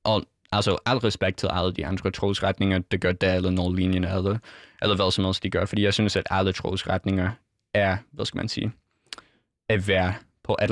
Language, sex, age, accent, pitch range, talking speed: Danish, male, 20-39, native, 95-110 Hz, 205 wpm